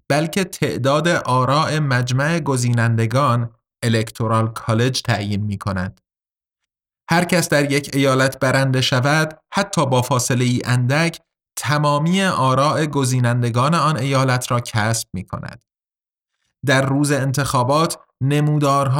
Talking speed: 105 wpm